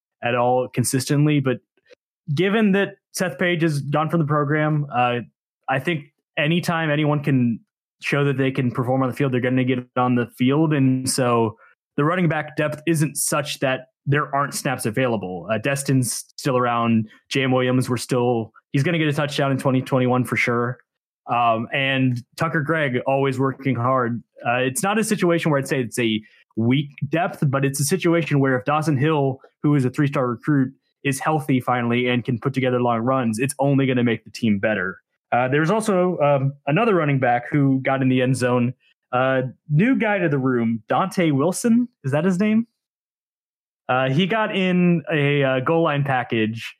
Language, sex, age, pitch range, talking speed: English, male, 20-39, 125-155 Hz, 190 wpm